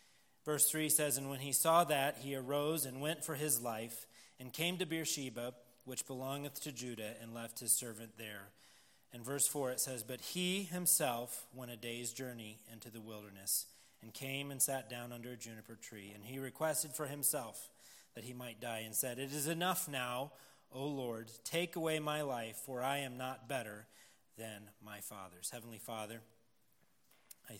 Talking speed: 185 wpm